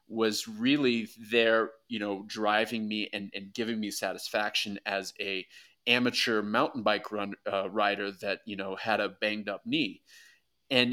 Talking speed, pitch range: 160 wpm, 100-120 Hz